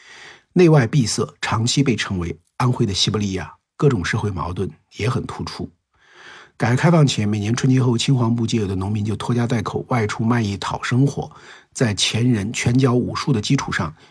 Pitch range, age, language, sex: 100-130 Hz, 50-69, Chinese, male